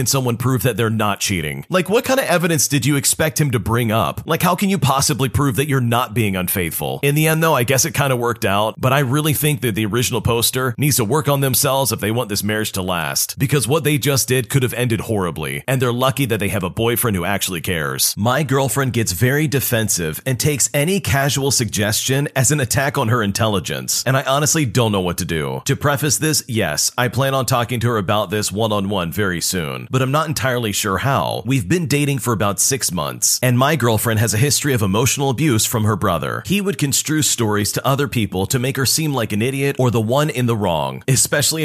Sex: male